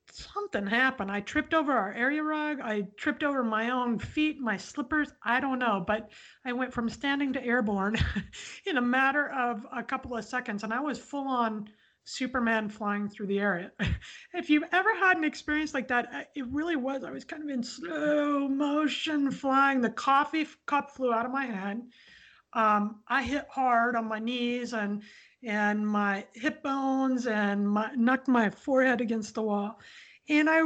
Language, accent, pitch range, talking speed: English, American, 225-290 Hz, 180 wpm